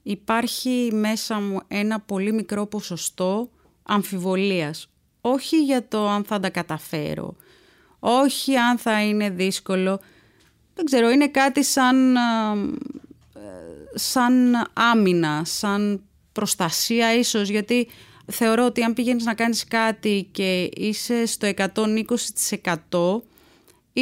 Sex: female